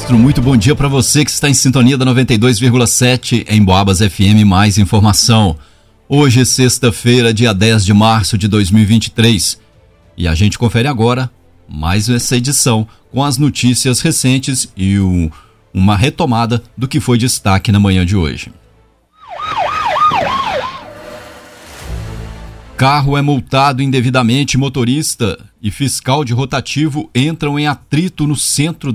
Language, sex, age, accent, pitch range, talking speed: Portuguese, male, 40-59, Brazilian, 110-135 Hz, 125 wpm